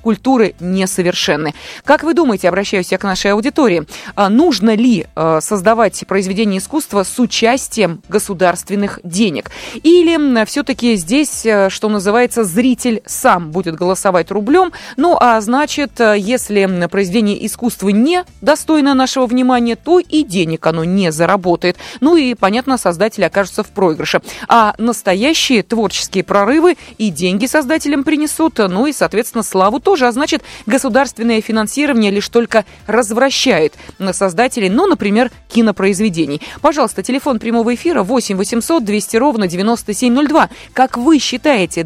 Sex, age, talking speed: female, 20-39, 130 wpm